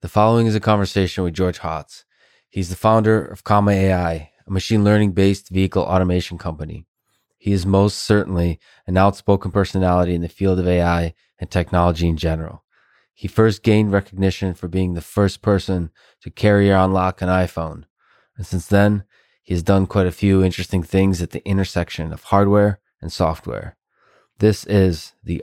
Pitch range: 85-100 Hz